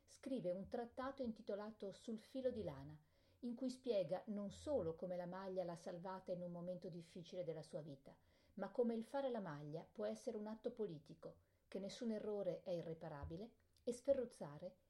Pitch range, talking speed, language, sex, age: 180-235 Hz, 175 wpm, Italian, female, 50-69